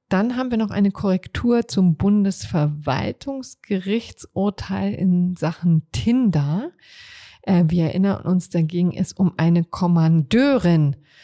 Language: German